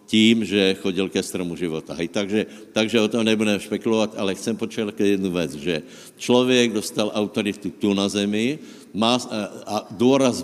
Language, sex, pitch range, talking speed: Slovak, male, 95-115 Hz, 165 wpm